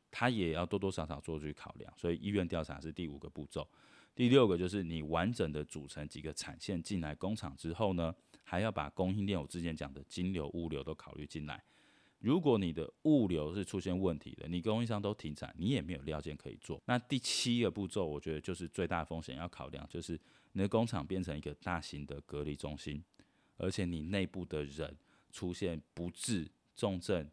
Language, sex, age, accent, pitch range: Chinese, male, 20-39, native, 75-100 Hz